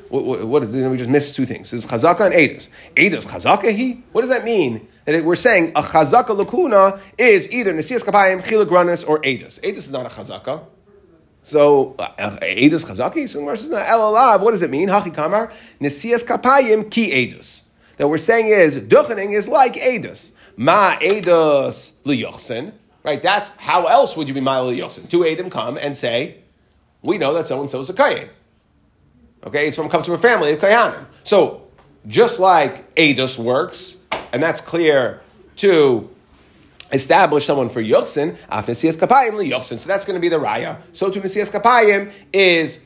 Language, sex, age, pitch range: English, male, 30-49, 140-210 Hz